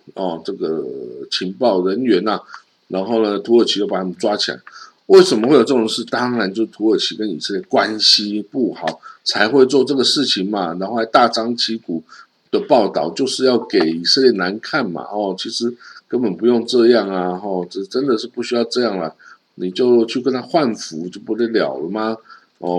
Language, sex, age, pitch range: Chinese, male, 50-69, 95-125 Hz